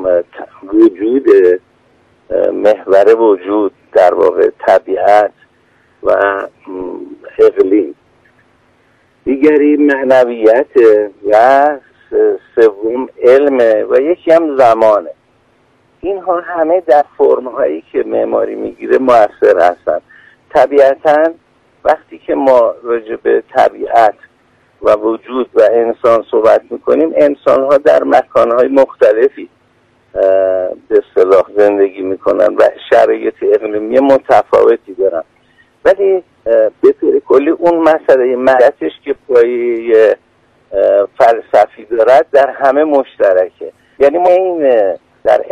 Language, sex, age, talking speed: Persian, male, 50-69, 95 wpm